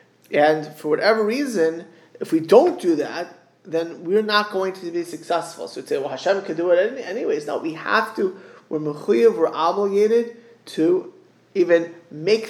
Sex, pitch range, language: male, 155-215 Hz, English